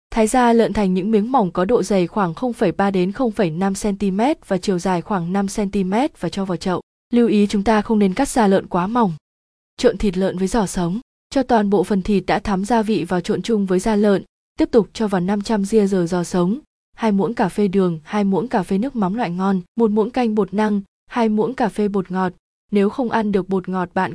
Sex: female